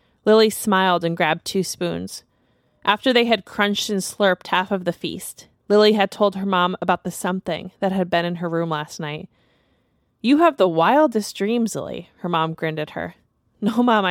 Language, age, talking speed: English, 20-39, 190 wpm